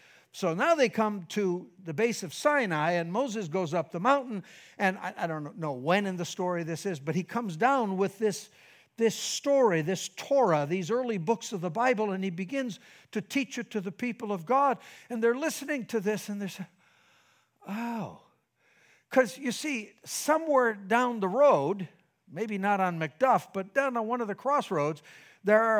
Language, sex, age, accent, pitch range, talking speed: English, male, 60-79, American, 185-250 Hz, 190 wpm